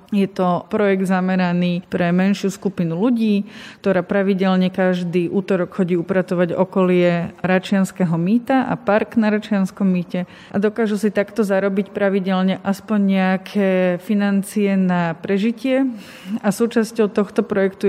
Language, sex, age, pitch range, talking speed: Slovak, female, 30-49, 185-205 Hz, 125 wpm